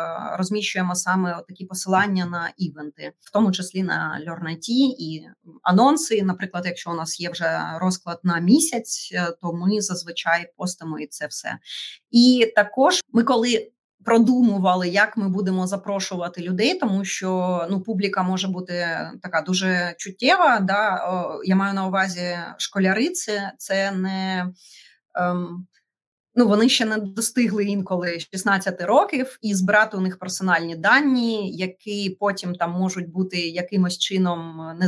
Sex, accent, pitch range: female, native, 180-210 Hz